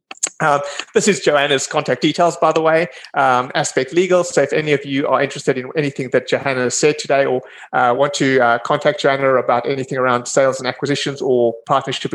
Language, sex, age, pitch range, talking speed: English, male, 30-49, 125-150 Hz, 200 wpm